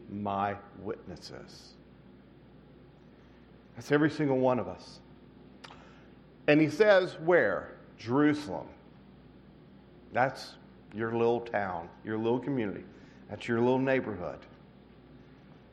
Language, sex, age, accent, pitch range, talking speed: English, male, 50-69, American, 100-140 Hz, 90 wpm